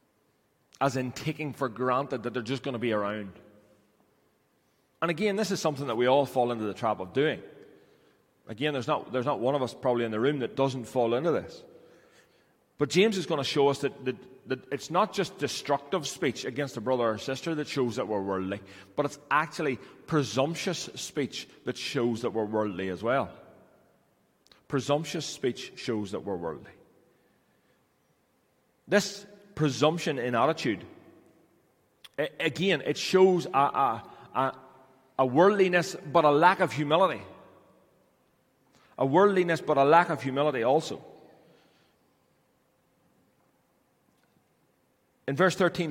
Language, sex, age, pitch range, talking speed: English, male, 30-49, 120-155 Hz, 150 wpm